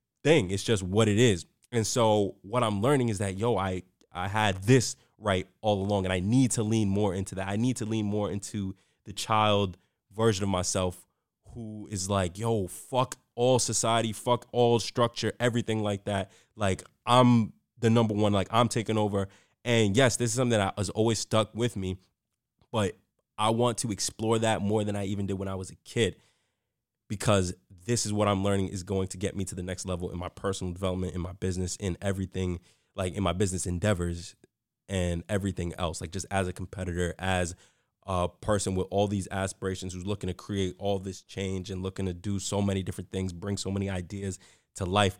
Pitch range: 95-110 Hz